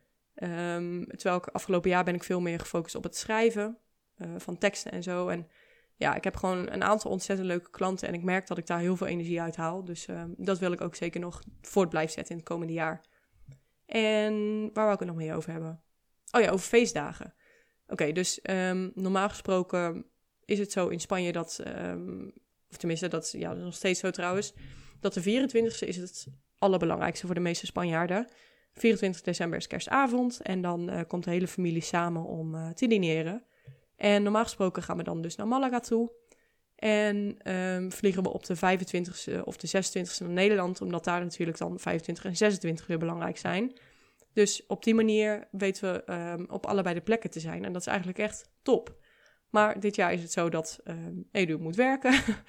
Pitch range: 170-205 Hz